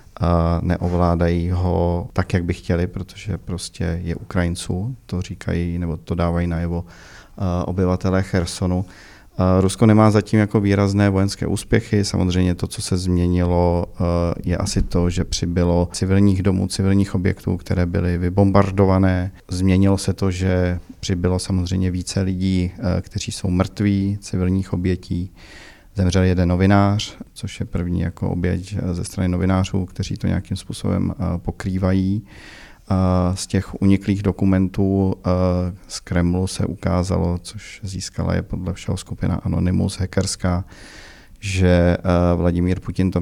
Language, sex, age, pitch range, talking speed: Czech, male, 40-59, 90-95 Hz, 130 wpm